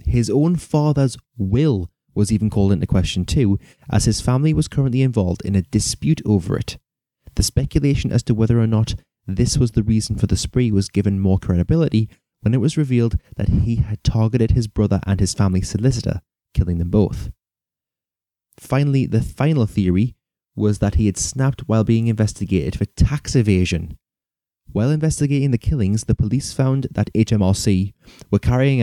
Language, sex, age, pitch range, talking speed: English, male, 20-39, 95-125 Hz, 170 wpm